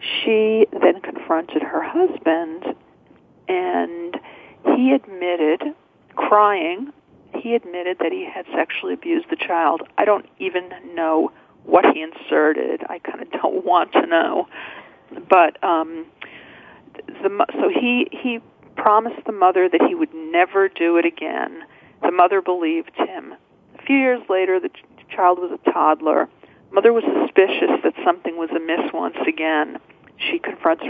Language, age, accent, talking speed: English, 50-69, American, 145 wpm